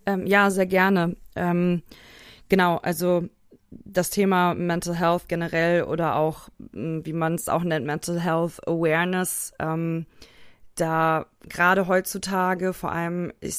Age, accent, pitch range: 20-39, German, 165-180 Hz